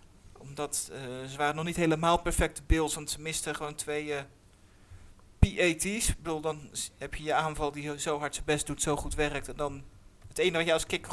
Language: Dutch